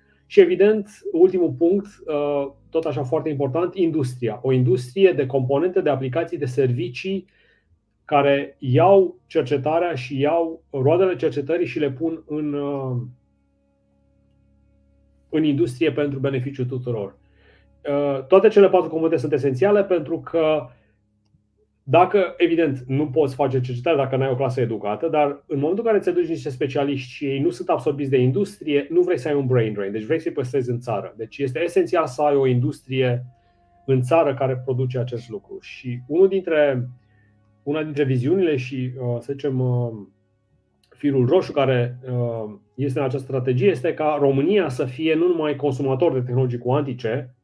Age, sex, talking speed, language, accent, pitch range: 30-49, male, 155 wpm, Romanian, native, 125-160 Hz